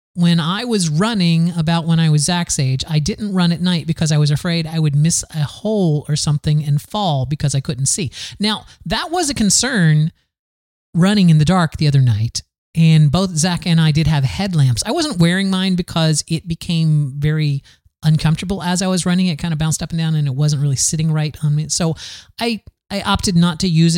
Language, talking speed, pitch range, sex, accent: English, 220 wpm, 135-180 Hz, male, American